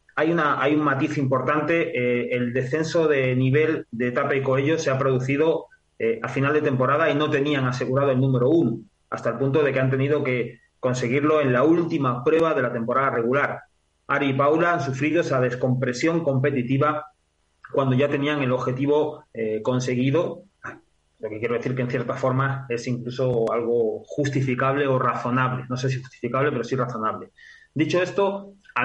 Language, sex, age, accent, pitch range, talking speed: Spanish, male, 30-49, Spanish, 125-155 Hz, 180 wpm